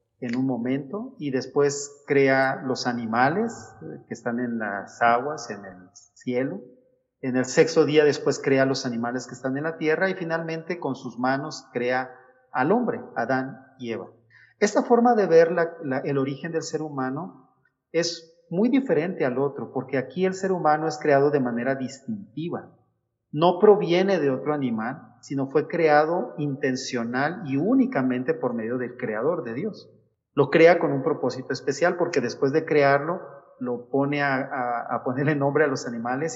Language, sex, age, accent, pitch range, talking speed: Spanish, male, 40-59, Mexican, 125-160 Hz, 165 wpm